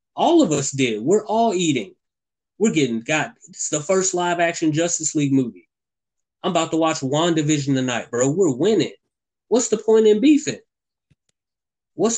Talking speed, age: 170 wpm, 20-39